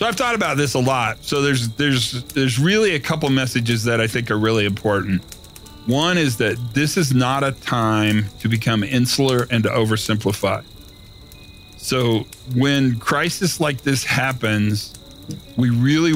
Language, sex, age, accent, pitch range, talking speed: English, male, 40-59, American, 110-135 Hz, 160 wpm